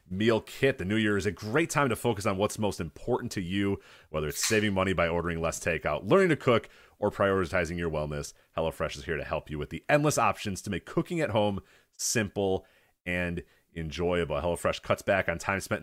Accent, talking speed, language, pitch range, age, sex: American, 210 wpm, English, 85-120 Hz, 30-49, male